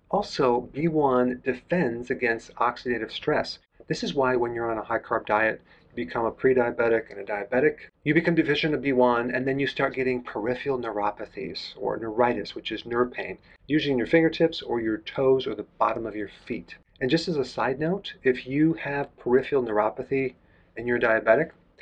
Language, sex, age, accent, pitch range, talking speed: English, male, 40-59, American, 115-145 Hz, 185 wpm